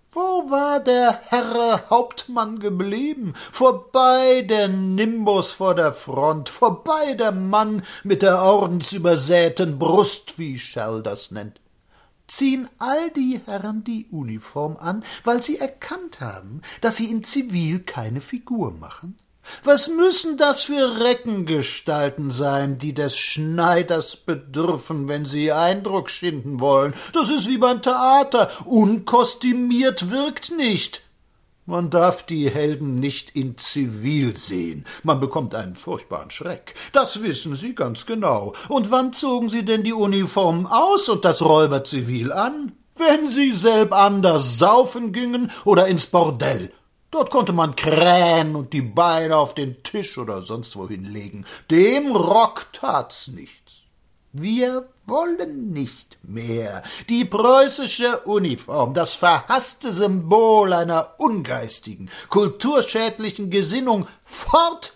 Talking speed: 125 wpm